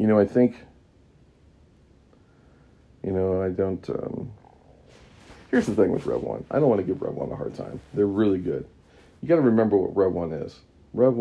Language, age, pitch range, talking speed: English, 40-59, 90-110 Hz, 200 wpm